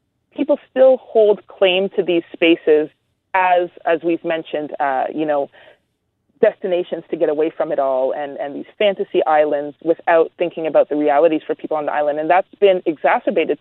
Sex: female